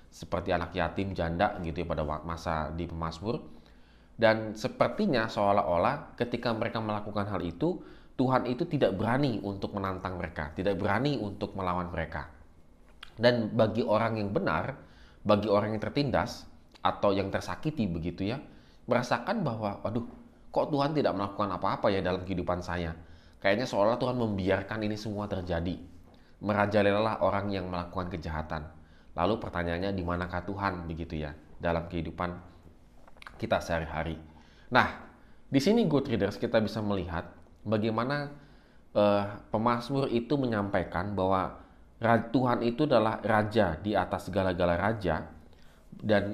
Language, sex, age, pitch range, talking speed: Indonesian, male, 20-39, 85-110 Hz, 130 wpm